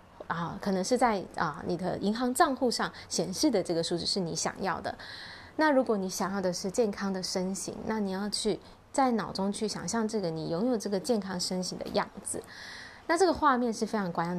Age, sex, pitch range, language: 20-39, female, 180-255 Hz, Chinese